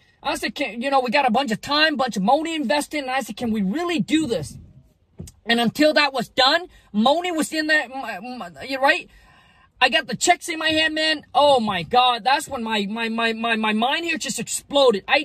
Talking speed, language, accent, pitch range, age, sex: 225 wpm, English, American, 235-295 Hz, 30-49, male